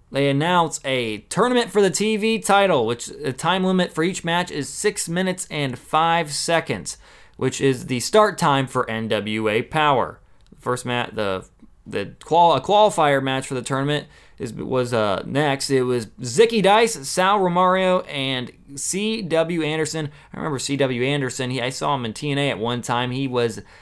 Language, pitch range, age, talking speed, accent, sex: English, 120-160 Hz, 20-39, 180 wpm, American, male